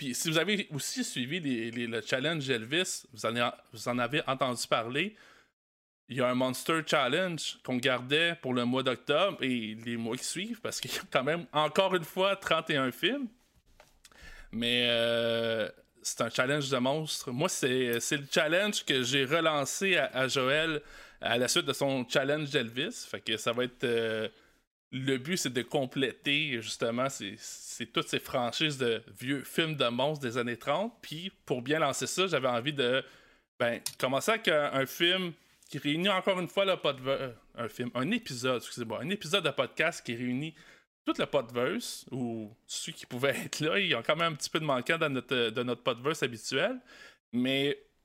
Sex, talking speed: male, 190 wpm